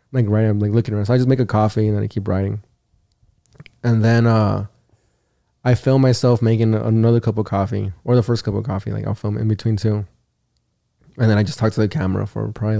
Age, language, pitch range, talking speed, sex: 20-39, English, 105-120 Hz, 235 wpm, male